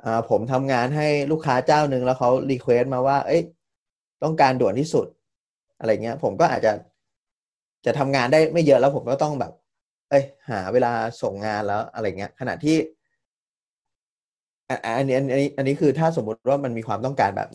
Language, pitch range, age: Thai, 120-155 Hz, 20-39